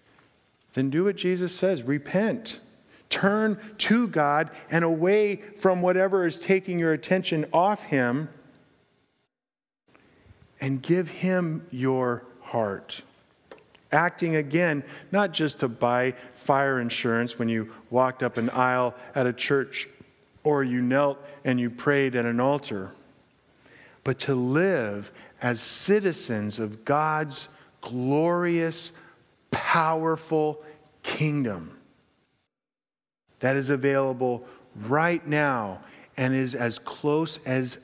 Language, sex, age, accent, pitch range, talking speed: English, male, 50-69, American, 125-165 Hz, 110 wpm